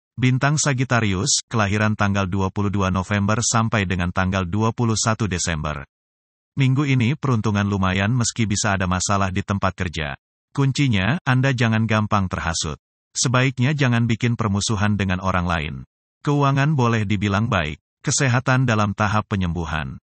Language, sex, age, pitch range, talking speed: Indonesian, male, 30-49, 90-120 Hz, 125 wpm